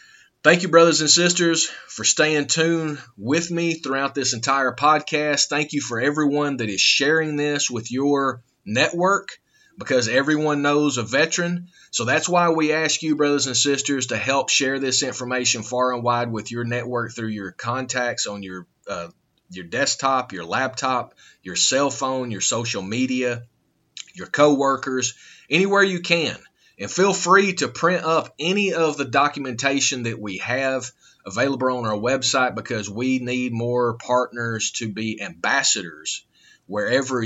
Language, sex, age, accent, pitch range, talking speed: English, male, 30-49, American, 120-155 Hz, 155 wpm